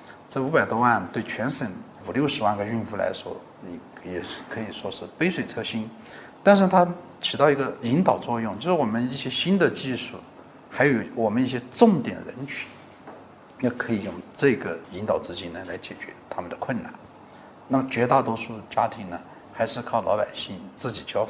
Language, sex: Chinese, male